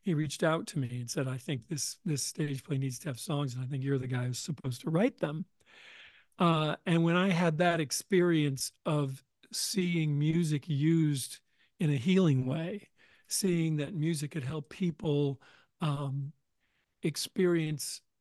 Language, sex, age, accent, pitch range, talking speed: English, male, 40-59, American, 140-170 Hz, 170 wpm